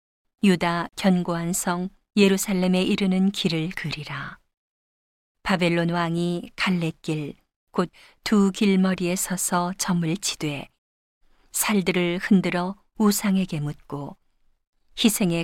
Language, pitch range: Korean, 165-195 Hz